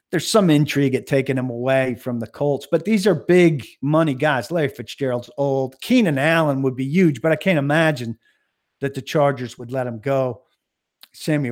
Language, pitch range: English, 120-145 Hz